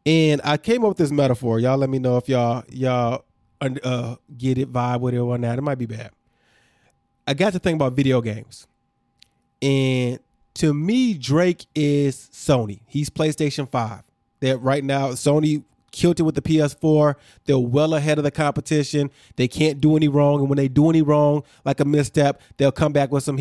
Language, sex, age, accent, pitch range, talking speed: English, male, 20-39, American, 130-150 Hz, 195 wpm